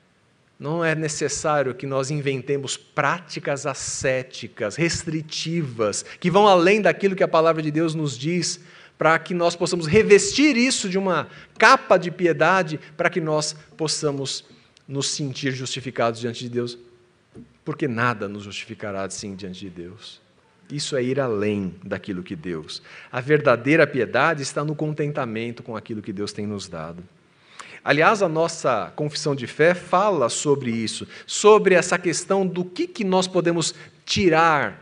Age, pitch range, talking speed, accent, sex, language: 50-69, 130-185 Hz, 150 wpm, Brazilian, male, Portuguese